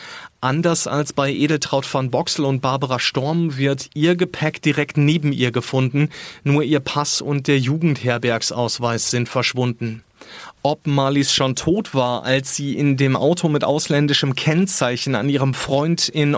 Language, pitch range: German, 125-150 Hz